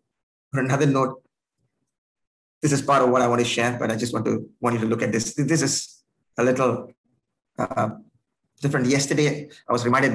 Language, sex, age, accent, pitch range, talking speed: English, male, 20-39, Indian, 115-145 Hz, 195 wpm